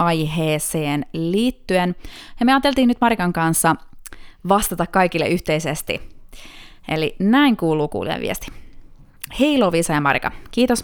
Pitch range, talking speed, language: 160-210 Hz, 115 wpm, Finnish